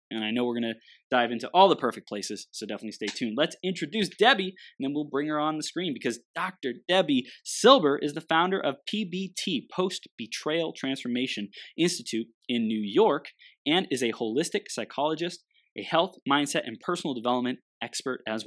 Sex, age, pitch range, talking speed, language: male, 20-39, 120-185 Hz, 180 wpm, English